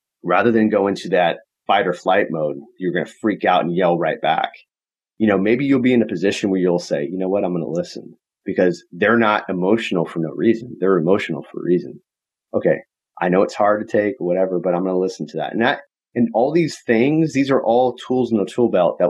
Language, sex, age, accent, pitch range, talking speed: English, male, 30-49, American, 95-115 Hz, 250 wpm